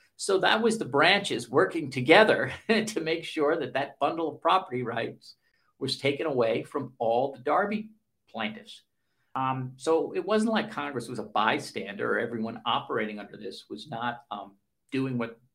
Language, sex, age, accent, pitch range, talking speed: English, male, 50-69, American, 120-200 Hz, 165 wpm